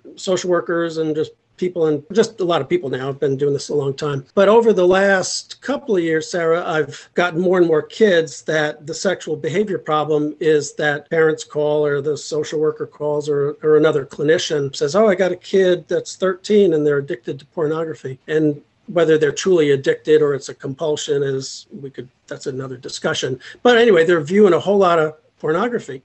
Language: English